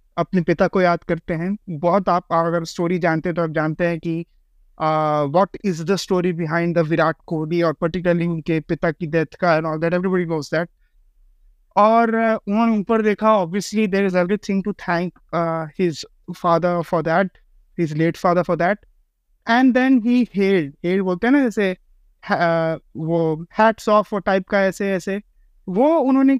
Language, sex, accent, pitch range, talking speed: Hindi, male, native, 170-220 Hz, 125 wpm